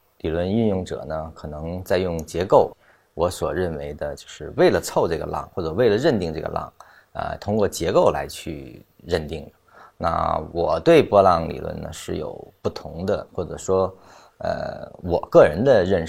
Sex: male